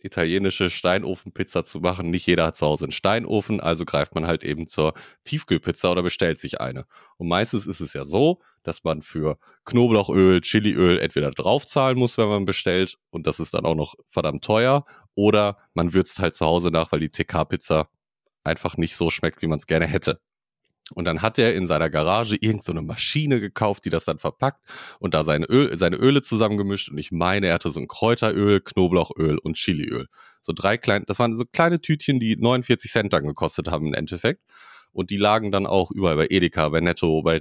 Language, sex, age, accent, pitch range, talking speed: German, male, 30-49, German, 85-115 Hz, 200 wpm